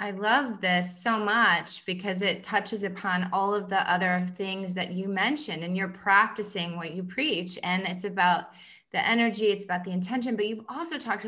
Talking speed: 190 wpm